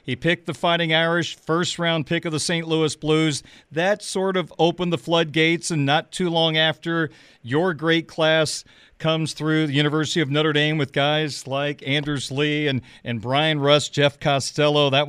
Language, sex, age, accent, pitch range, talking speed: English, male, 40-59, American, 145-170 Hz, 180 wpm